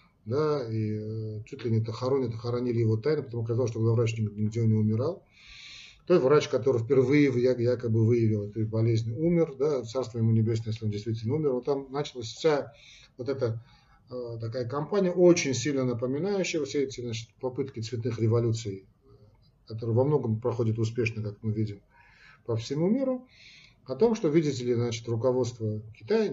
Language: Russian